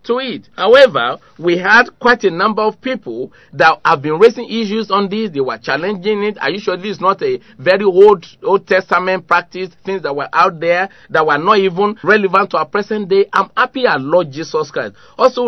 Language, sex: English, male